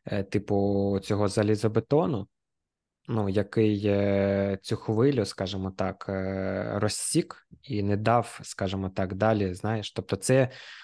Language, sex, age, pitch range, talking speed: Ukrainian, male, 20-39, 100-120 Hz, 105 wpm